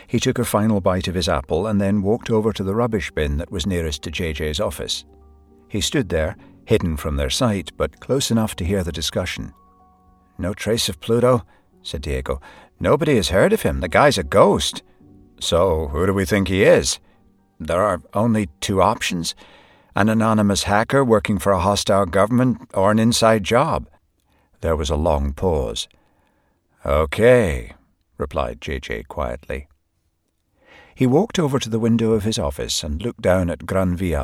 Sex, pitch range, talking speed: male, 80-105 Hz, 175 wpm